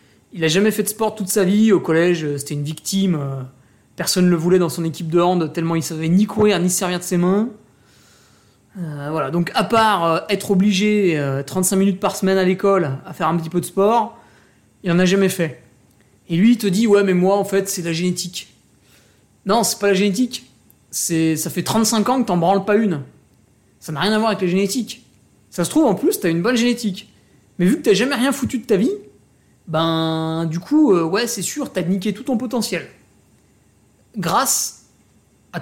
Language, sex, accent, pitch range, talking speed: French, male, French, 160-210 Hz, 215 wpm